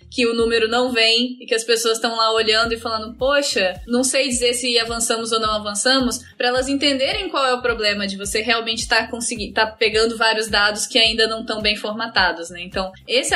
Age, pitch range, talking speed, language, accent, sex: 10-29, 220-265 Hz, 215 wpm, Portuguese, Brazilian, female